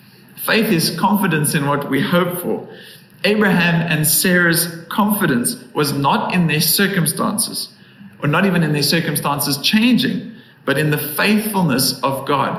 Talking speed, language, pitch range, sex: 145 wpm, English, 145-190 Hz, male